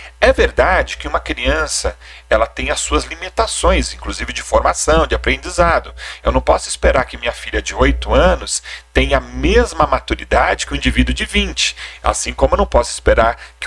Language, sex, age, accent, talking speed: Portuguese, male, 40-59, Brazilian, 185 wpm